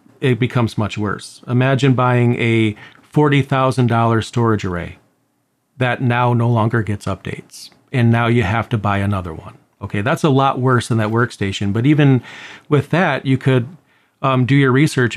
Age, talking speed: 40-59, 165 wpm